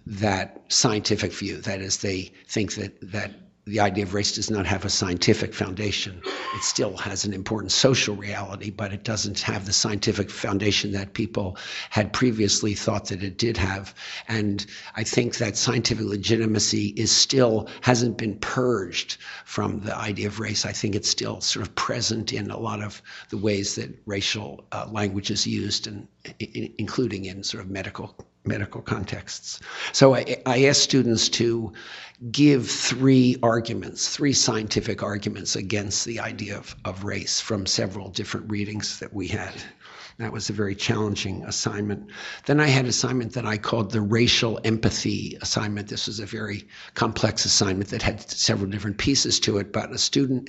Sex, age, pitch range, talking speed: male, 60-79, 100-115 Hz, 170 wpm